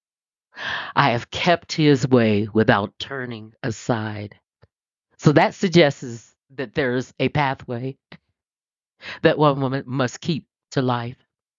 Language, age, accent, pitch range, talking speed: English, 50-69, American, 120-165 Hz, 120 wpm